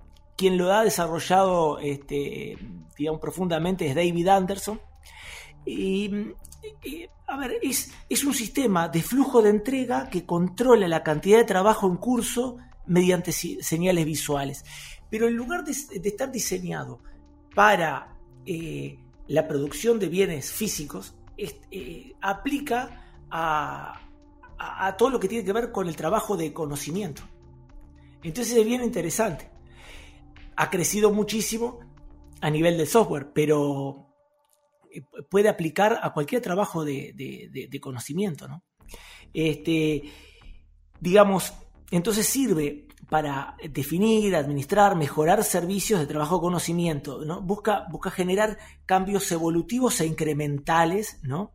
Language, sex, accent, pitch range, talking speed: Spanish, male, Argentinian, 150-220 Hz, 115 wpm